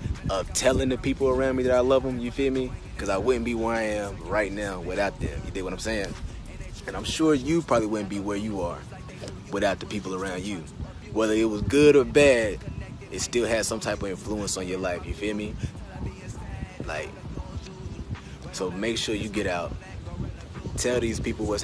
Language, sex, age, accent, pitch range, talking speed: English, male, 20-39, American, 95-120 Hz, 205 wpm